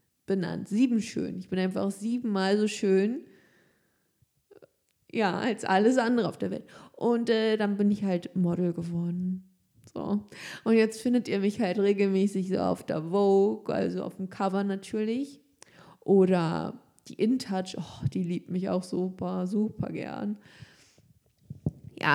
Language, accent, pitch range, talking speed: German, German, 185-225 Hz, 145 wpm